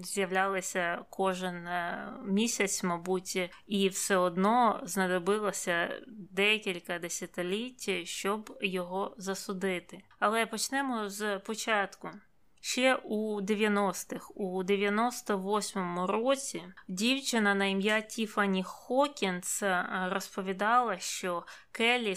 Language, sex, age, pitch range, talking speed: Ukrainian, female, 20-39, 185-215 Hz, 85 wpm